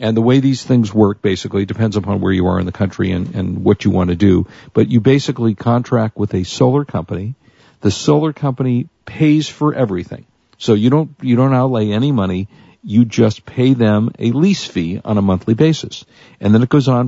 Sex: male